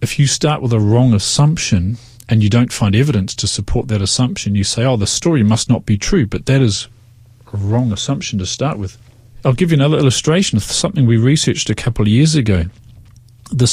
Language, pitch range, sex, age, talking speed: English, 105-130 Hz, male, 40-59, 215 wpm